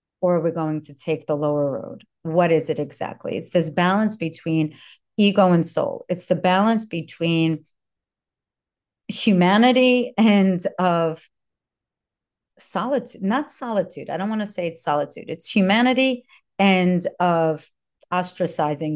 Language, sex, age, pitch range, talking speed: English, female, 50-69, 155-190 Hz, 135 wpm